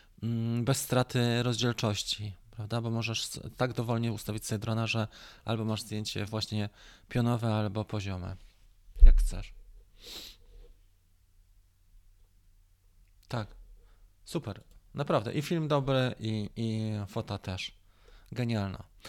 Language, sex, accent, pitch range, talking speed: Polish, male, native, 100-125 Hz, 100 wpm